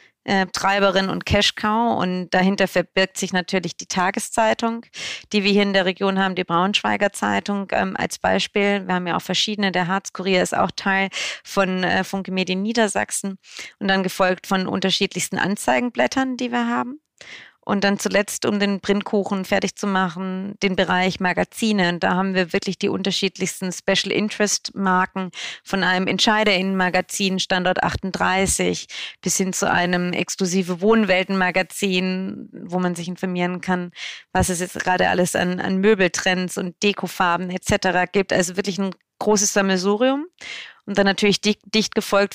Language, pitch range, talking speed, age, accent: German, 185-200 Hz, 150 wpm, 30-49, German